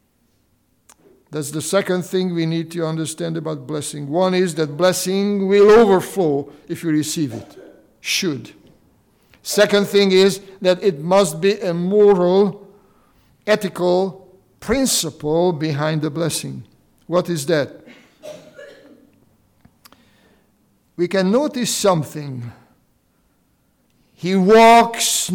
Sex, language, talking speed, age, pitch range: male, English, 105 wpm, 60-79, 150-195 Hz